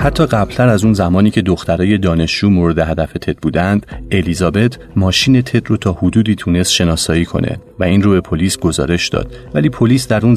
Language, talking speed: Persian, 185 wpm